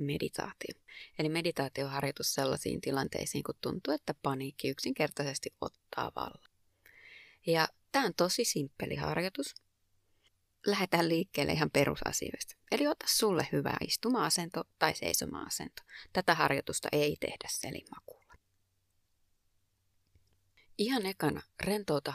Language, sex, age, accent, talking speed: Finnish, female, 30-49, native, 105 wpm